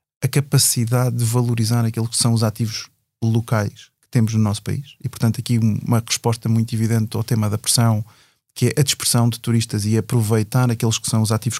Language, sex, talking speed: Portuguese, male, 200 wpm